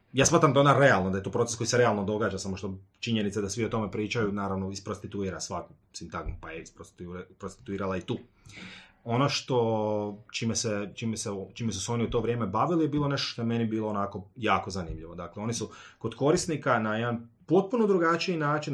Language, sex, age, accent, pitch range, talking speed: Croatian, male, 30-49, native, 100-130 Hz, 200 wpm